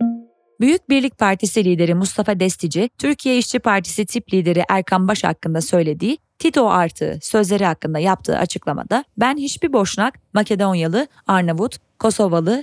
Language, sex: Turkish, female